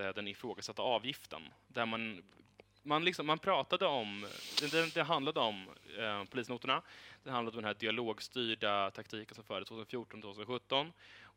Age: 20-39